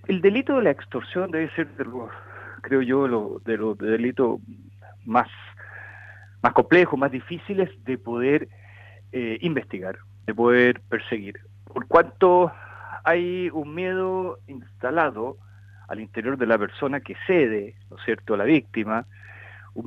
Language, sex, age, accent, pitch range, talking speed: Spanish, male, 50-69, Argentinian, 100-140 Hz, 145 wpm